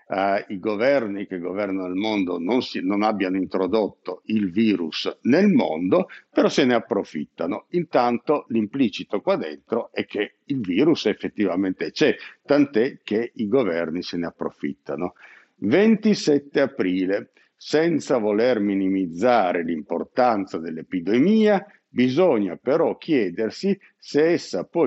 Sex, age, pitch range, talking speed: male, 50-69, 100-140 Hz, 115 wpm